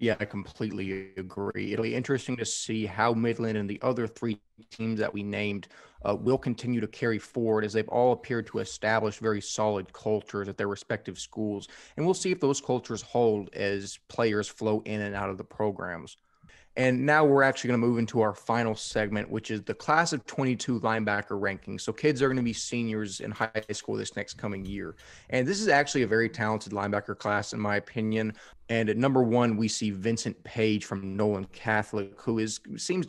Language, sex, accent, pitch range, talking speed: English, male, American, 105-120 Hz, 205 wpm